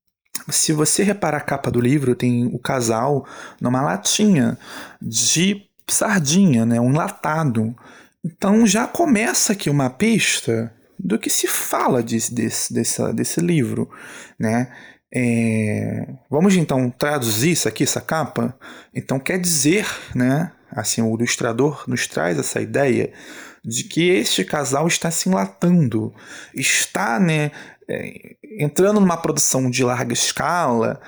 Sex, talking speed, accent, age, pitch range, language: male, 125 wpm, Brazilian, 20-39, 120-180 Hz, Portuguese